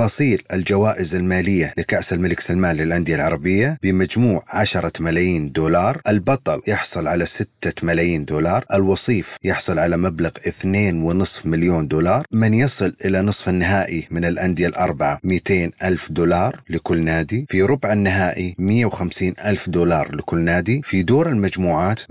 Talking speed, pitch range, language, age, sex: 135 wpm, 85-105 Hz, Arabic, 30-49, male